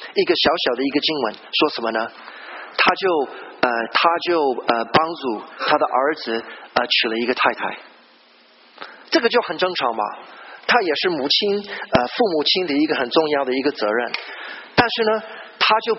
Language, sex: Chinese, male